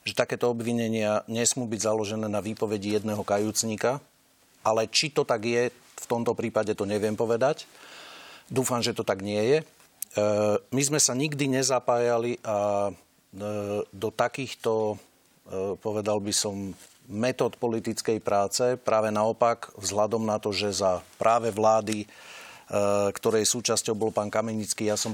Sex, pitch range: male, 105-120 Hz